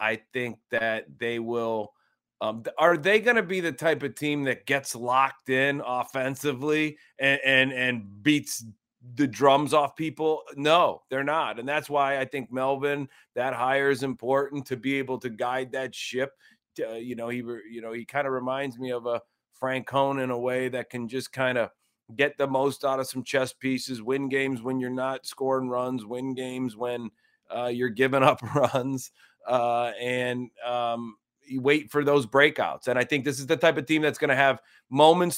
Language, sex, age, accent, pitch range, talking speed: English, male, 30-49, American, 125-145 Hz, 200 wpm